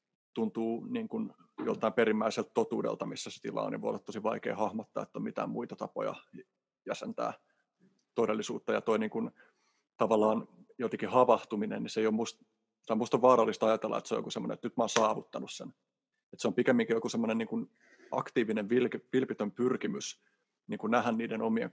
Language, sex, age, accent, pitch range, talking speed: Finnish, male, 30-49, native, 110-130 Hz, 175 wpm